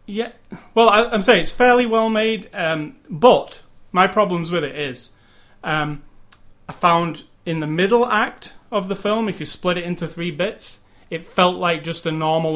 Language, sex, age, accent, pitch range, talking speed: English, male, 30-49, British, 140-175 Hz, 180 wpm